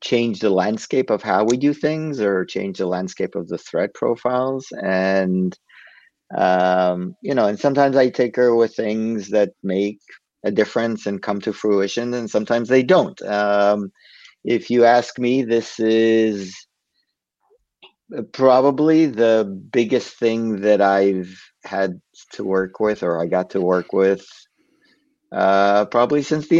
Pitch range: 100-125 Hz